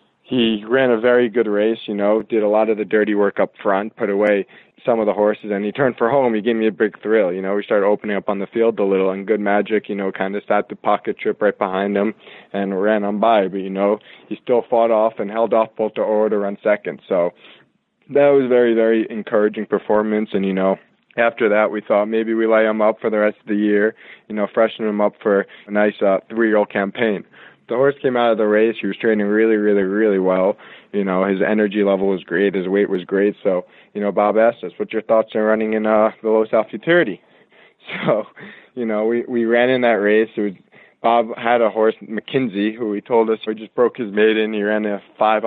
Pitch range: 105-115 Hz